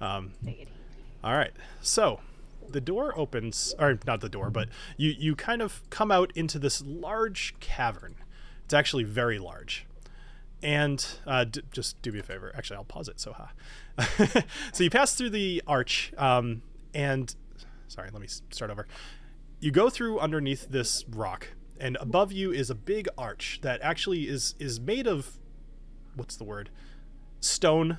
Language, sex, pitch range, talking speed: English, male, 120-165 Hz, 165 wpm